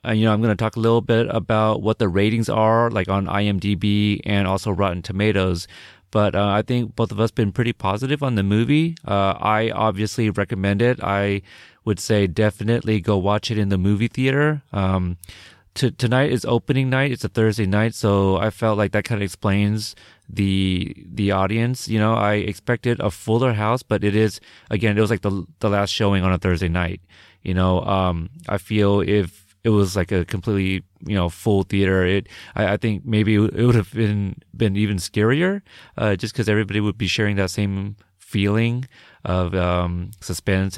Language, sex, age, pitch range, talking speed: English, male, 30-49, 95-110 Hz, 195 wpm